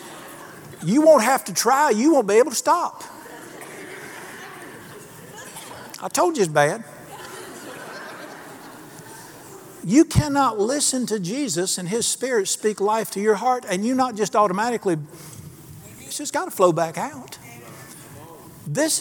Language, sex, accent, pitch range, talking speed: English, male, American, 145-195 Hz, 135 wpm